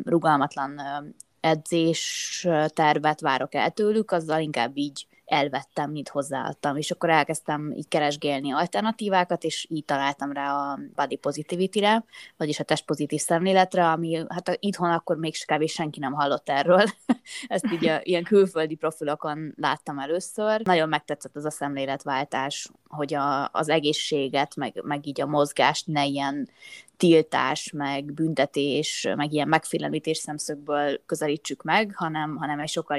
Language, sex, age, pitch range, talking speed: Hungarian, female, 20-39, 145-165 Hz, 140 wpm